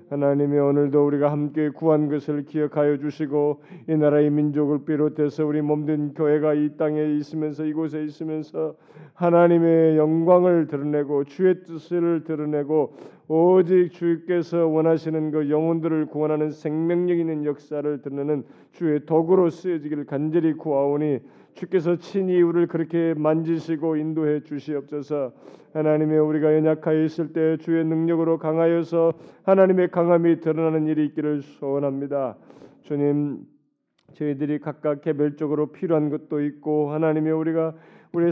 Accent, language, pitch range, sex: native, Korean, 145-165 Hz, male